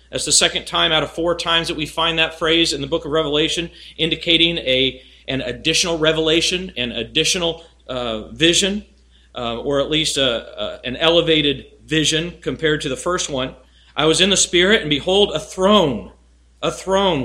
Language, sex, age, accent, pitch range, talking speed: English, male, 40-59, American, 135-170 Hz, 180 wpm